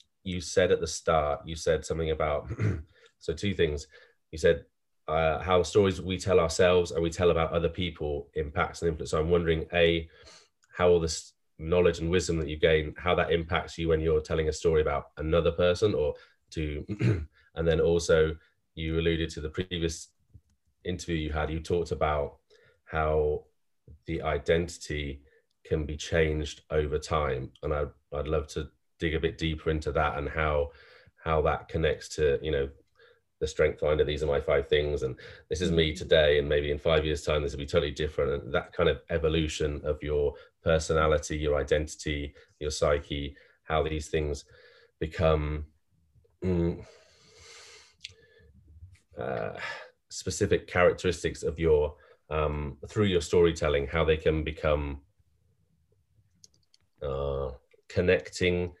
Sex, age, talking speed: male, 20-39, 155 wpm